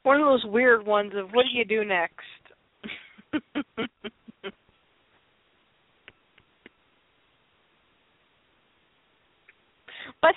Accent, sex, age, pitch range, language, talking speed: American, female, 40-59, 230-315 Hz, English, 70 wpm